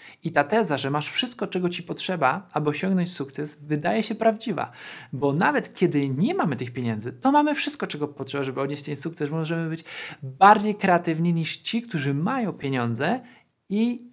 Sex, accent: male, native